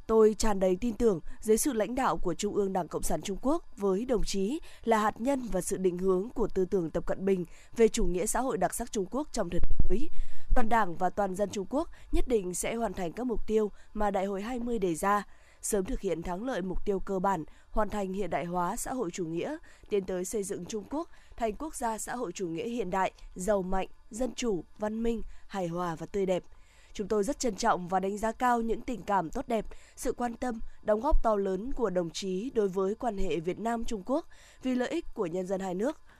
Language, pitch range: Vietnamese, 190-235 Hz